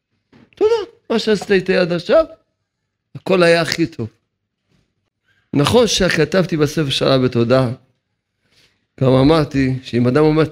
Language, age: Hebrew, 40-59